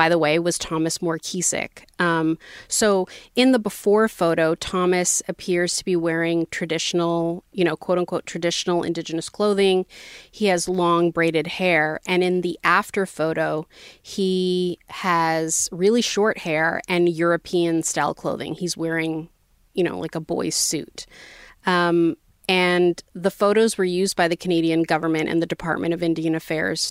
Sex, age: female, 30-49